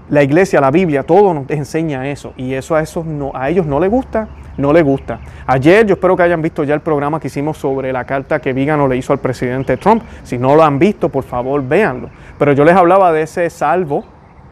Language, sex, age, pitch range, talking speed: Spanish, male, 30-49, 135-180 Hz, 230 wpm